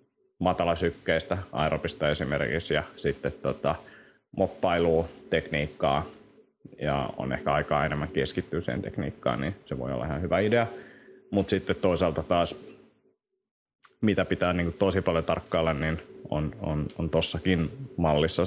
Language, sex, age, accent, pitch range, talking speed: Finnish, male, 30-49, native, 80-95 Hz, 125 wpm